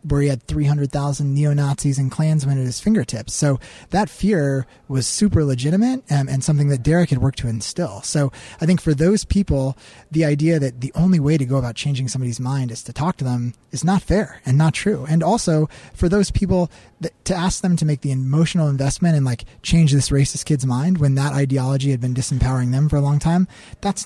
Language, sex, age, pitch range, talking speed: English, male, 20-39, 130-155 Hz, 220 wpm